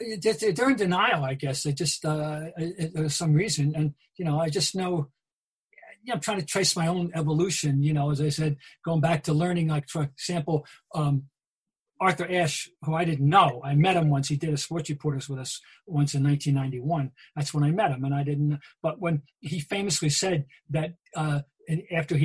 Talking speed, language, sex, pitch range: 200 wpm, English, male, 145-185 Hz